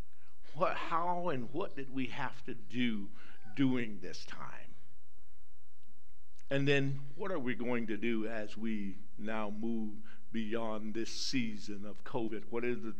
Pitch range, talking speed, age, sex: 110-130 Hz, 145 wpm, 60-79, male